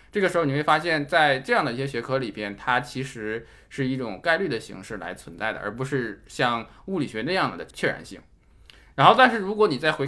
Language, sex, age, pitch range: Chinese, male, 20-39, 125-165 Hz